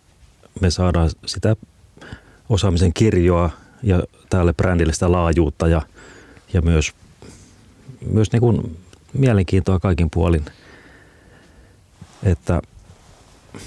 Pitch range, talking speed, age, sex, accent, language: 85-95 Hz, 90 wpm, 40-59, male, native, Finnish